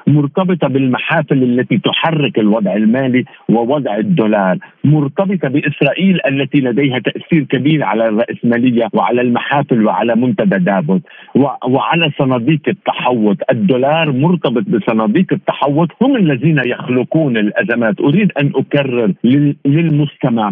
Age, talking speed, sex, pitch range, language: 50-69, 105 wpm, male, 125-175 Hz, Arabic